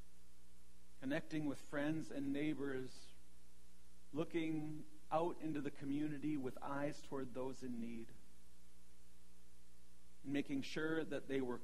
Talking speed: 115 wpm